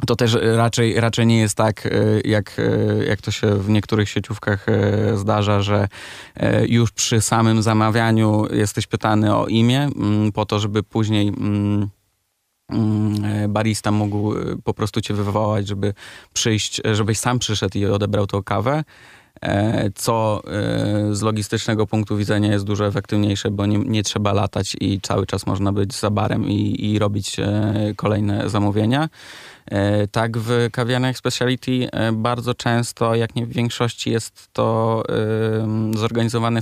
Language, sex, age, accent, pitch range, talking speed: Polish, male, 20-39, native, 105-115 Hz, 135 wpm